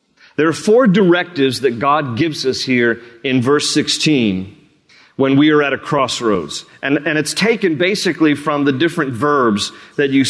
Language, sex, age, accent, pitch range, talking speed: English, male, 40-59, American, 150-185 Hz, 170 wpm